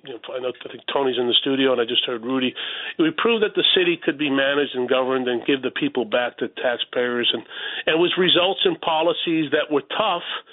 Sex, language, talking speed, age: male, English, 235 wpm, 40-59